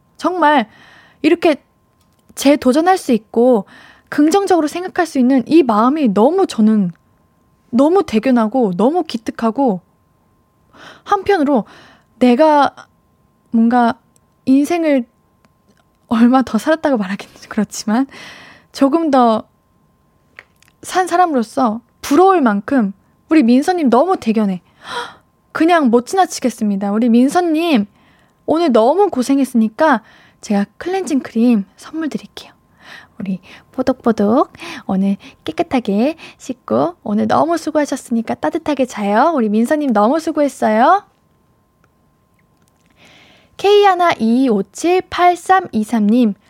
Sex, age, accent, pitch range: female, 20-39, native, 220-310 Hz